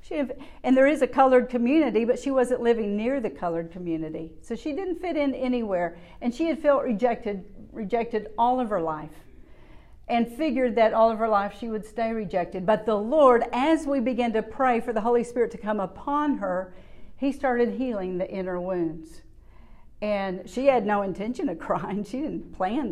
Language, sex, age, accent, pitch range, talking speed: English, female, 50-69, American, 185-245 Hz, 190 wpm